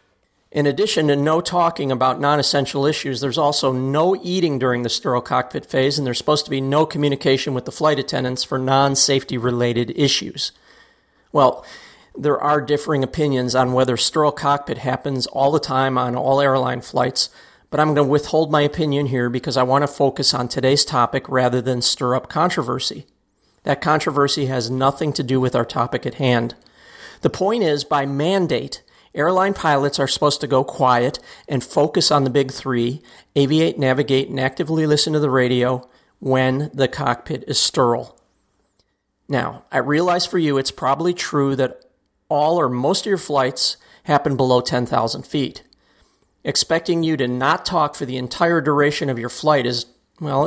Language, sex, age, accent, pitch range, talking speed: English, male, 40-59, American, 130-150 Hz, 170 wpm